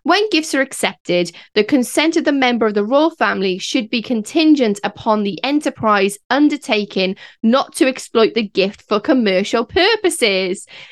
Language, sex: English, female